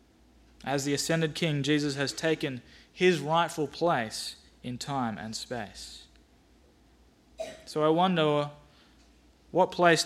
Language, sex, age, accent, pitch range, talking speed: English, male, 20-39, Australian, 115-155 Hz, 115 wpm